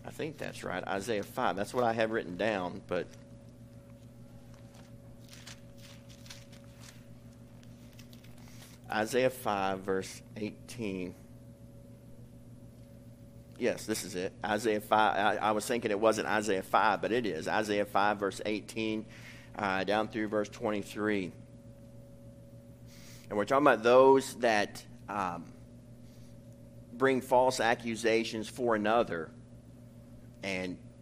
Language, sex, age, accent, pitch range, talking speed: English, male, 50-69, American, 105-120 Hz, 110 wpm